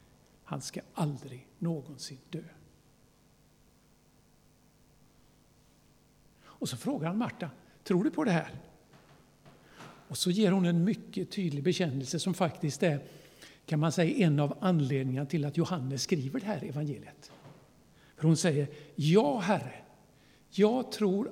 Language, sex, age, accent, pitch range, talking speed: Swedish, male, 60-79, native, 145-195 Hz, 130 wpm